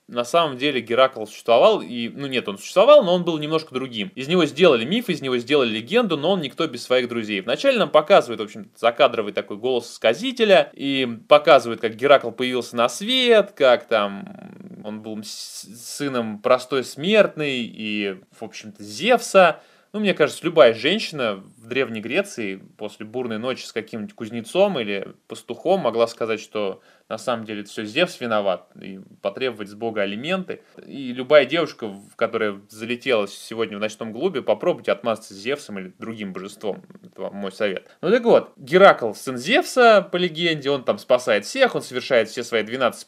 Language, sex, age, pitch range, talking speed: Russian, male, 20-39, 110-180 Hz, 170 wpm